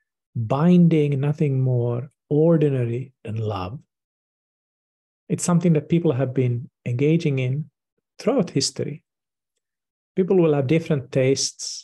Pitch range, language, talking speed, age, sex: 120-160 Hz, English, 105 wpm, 50-69, male